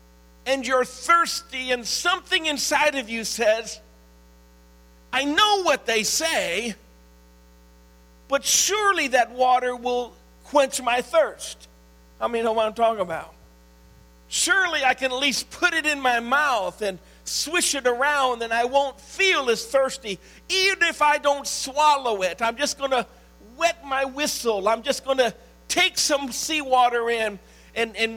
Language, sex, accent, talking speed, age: English, male, American, 155 wpm, 50-69